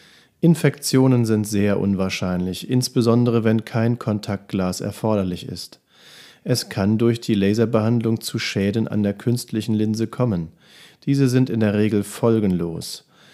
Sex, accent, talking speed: male, German, 125 wpm